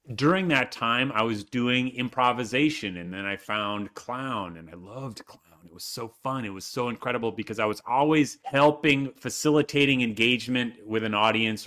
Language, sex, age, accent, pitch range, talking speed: English, male, 30-49, American, 105-135 Hz, 175 wpm